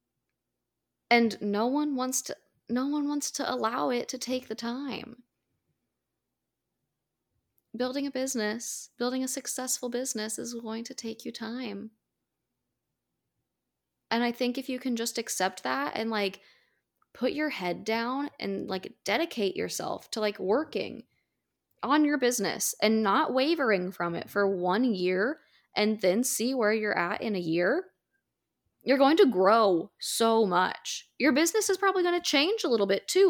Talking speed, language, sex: 155 wpm, English, female